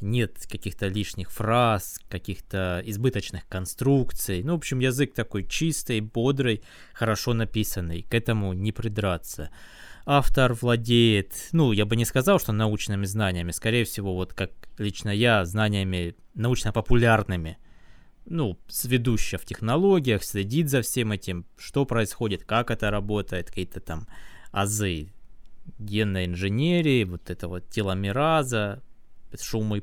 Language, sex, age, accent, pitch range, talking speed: Russian, male, 20-39, native, 95-115 Hz, 125 wpm